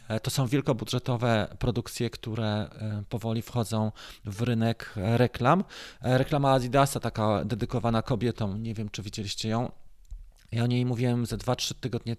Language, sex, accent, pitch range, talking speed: Polish, male, native, 110-140 Hz, 135 wpm